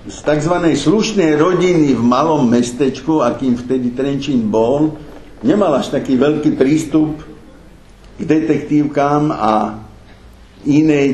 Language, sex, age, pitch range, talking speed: Slovak, male, 60-79, 120-150 Hz, 110 wpm